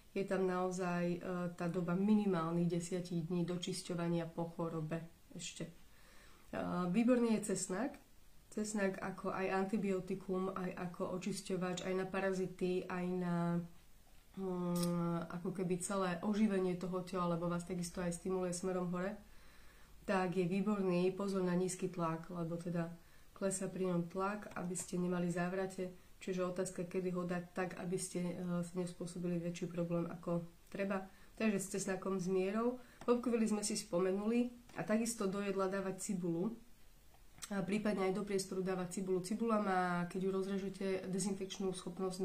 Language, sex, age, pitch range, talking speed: Slovak, female, 20-39, 175-195 Hz, 140 wpm